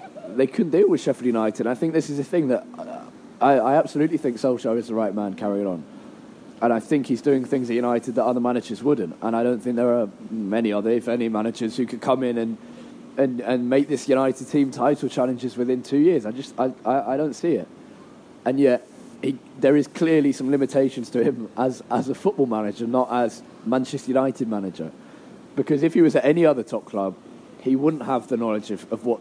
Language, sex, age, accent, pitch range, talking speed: English, male, 20-39, British, 115-135 Hz, 225 wpm